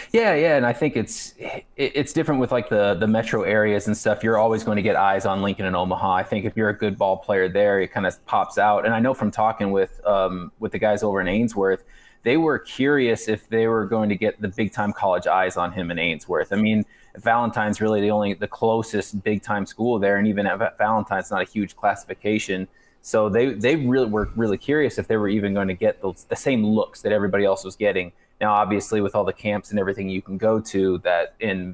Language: English